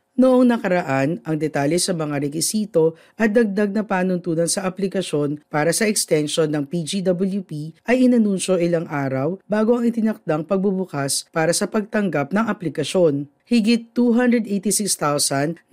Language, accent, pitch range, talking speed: Filipino, native, 150-215 Hz, 125 wpm